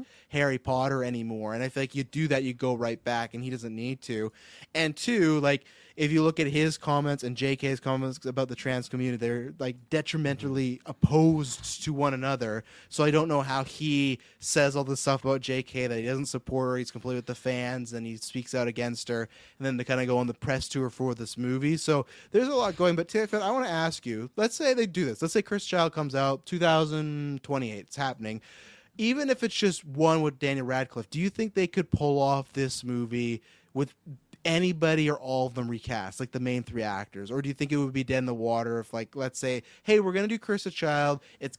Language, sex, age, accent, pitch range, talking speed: English, male, 20-39, American, 125-155 Hz, 235 wpm